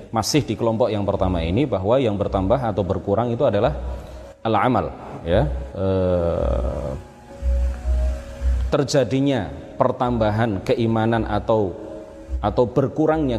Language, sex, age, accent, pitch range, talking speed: Indonesian, male, 30-49, native, 95-120 Hz, 100 wpm